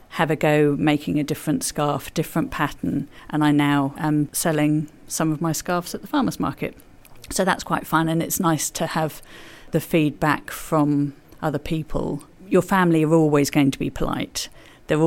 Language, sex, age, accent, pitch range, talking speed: English, female, 50-69, British, 145-165 Hz, 180 wpm